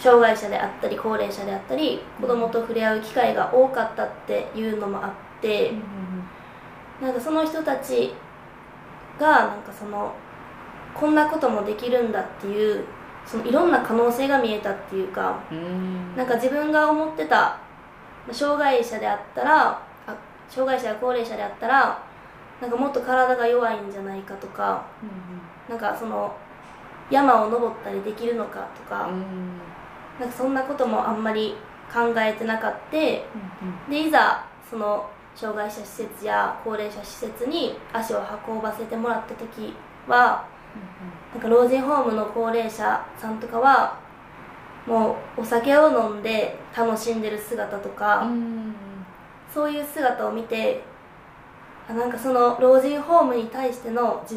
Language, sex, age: Japanese, female, 20-39